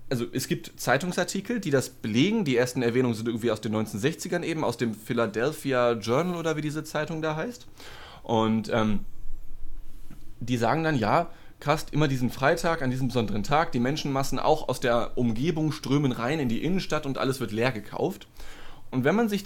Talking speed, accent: 185 wpm, German